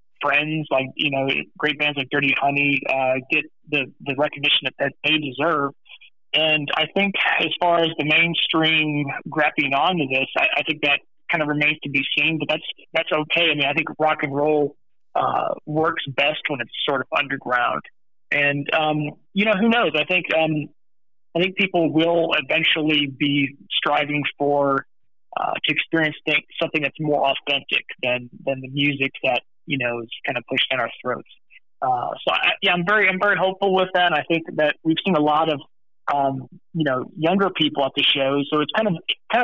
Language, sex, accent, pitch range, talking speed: English, male, American, 140-160 Hz, 200 wpm